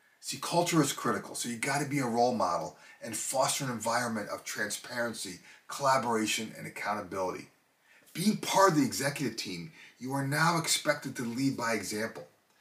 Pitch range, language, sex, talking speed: 115-155 Hz, English, male, 165 wpm